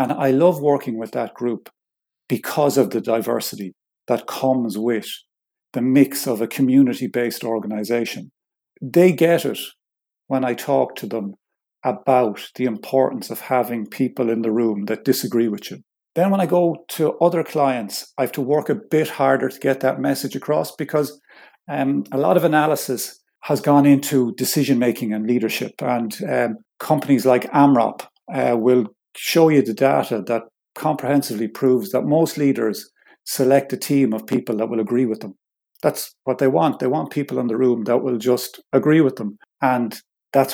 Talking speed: 175 wpm